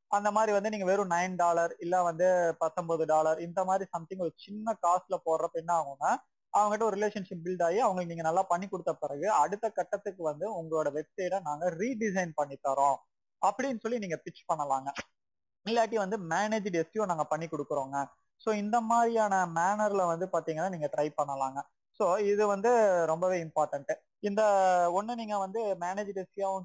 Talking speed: 160 wpm